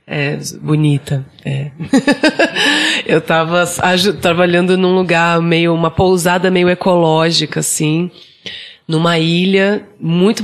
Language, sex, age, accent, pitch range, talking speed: Portuguese, female, 20-39, Brazilian, 160-200 Hz, 105 wpm